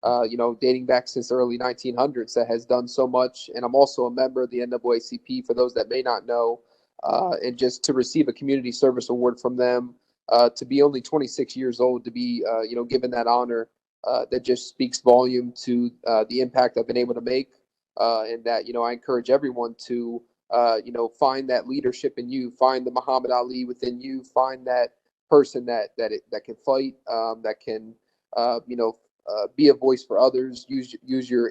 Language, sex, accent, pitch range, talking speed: English, male, American, 120-130 Hz, 220 wpm